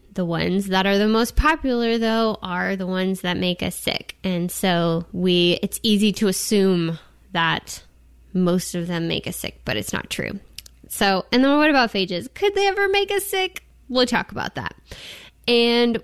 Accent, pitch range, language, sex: American, 180-225 Hz, English, female